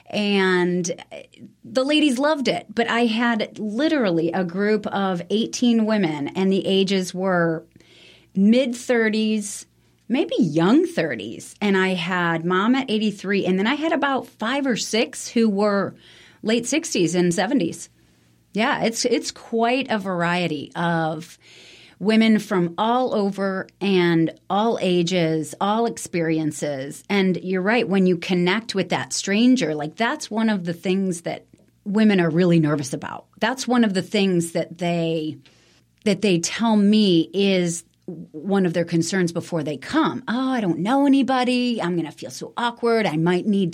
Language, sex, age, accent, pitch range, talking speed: English, female, 30-49, American, 170-230 Hz, 155 wpm